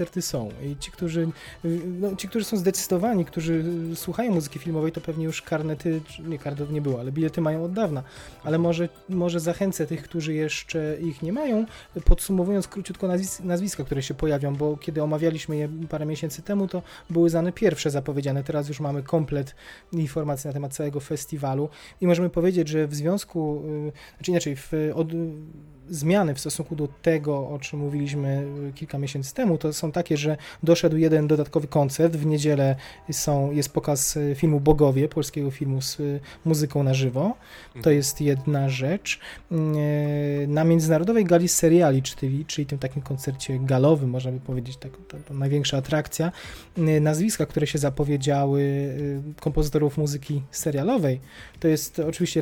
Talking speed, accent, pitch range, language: 155 wpm, native, 145-165 Hz, Polish